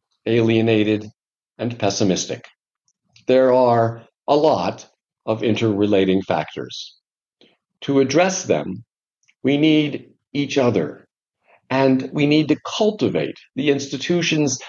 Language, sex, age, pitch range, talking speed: English, male, 50-69, 115-150 Hz, 100 wpm